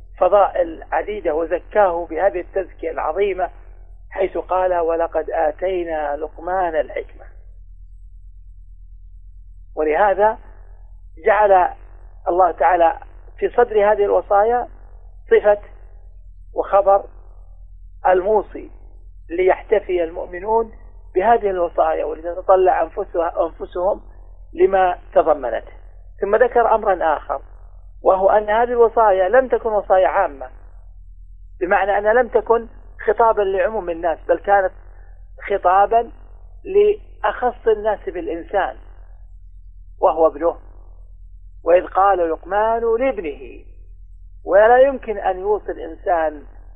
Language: Arabic